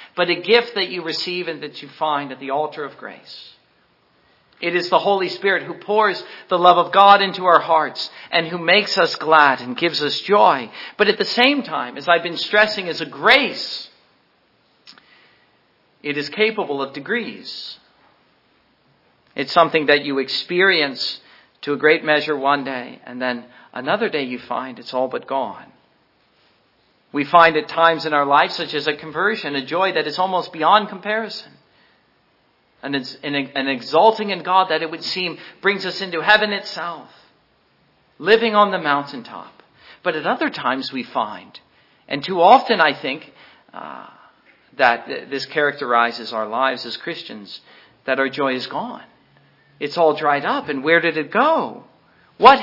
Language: English